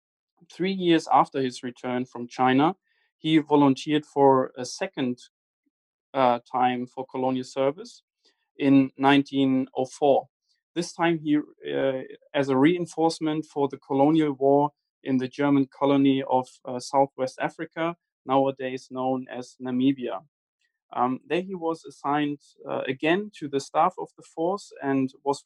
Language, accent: English, German